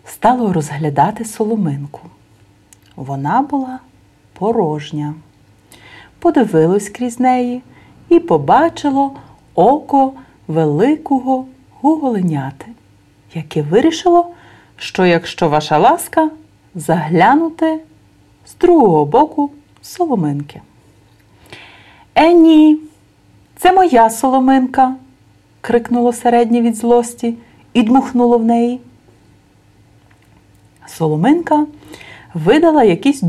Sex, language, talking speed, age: female, Bulgarian, 75 wpm, 40-59